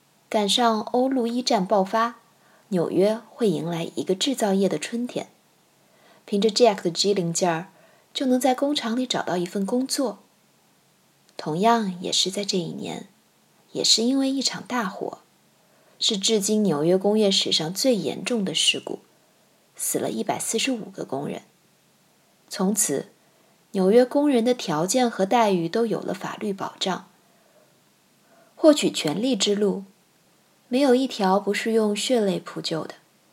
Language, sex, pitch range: Chinese, female, 185-240 Hz